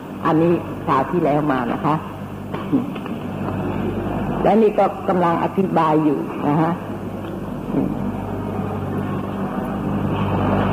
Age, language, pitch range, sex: 60-79, Thai, 165-210 Hz, female